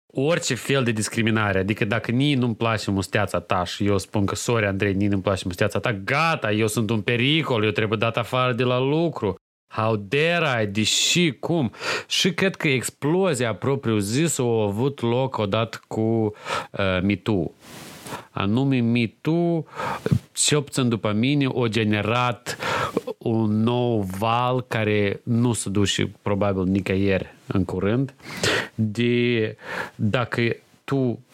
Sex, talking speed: male, 140 wpm